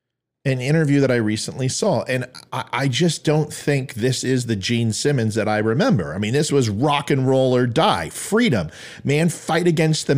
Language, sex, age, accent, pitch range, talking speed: English, male, 40-59, American, 115-150 Hz, 200 wpm